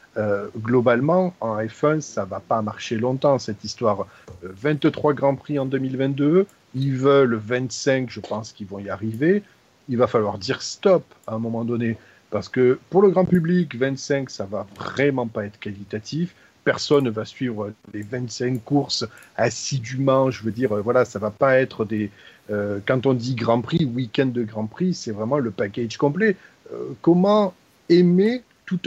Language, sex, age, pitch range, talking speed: French, male, 40-59, 110-160 Hz, 175 wpm